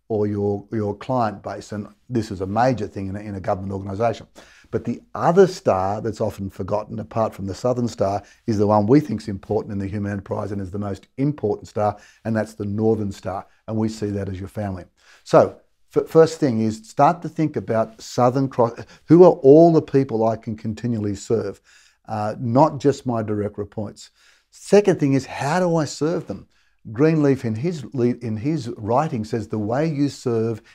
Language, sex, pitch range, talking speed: English, male, 105-145 Hz, 195 wpm